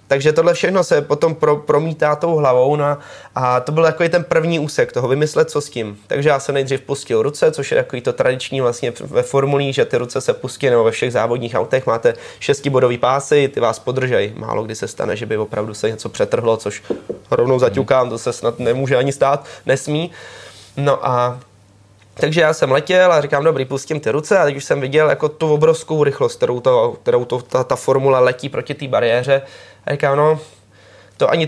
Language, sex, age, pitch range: Czech, male, 20-39, 135-190 Hz